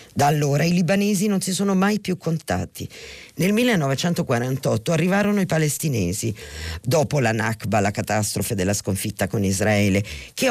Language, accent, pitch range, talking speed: Italian, native, 115-180 Hz, 145 wpm